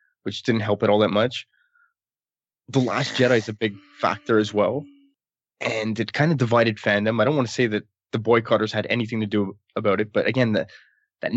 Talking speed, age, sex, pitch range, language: 205 wpm, 20-39, male, 110-135 Hz, English